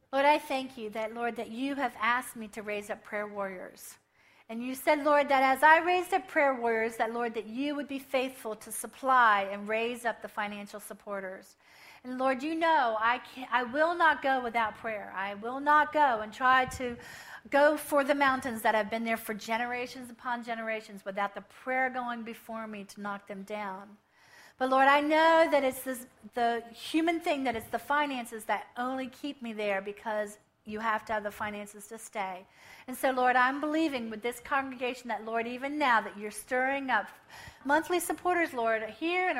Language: English